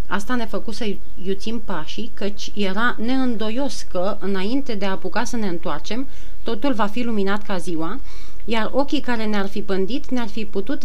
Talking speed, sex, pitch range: 175 wpm, female, 190-245 Hz